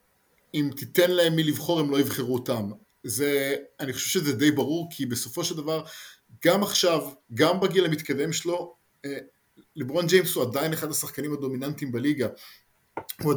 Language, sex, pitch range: English, male, 130-165 Hz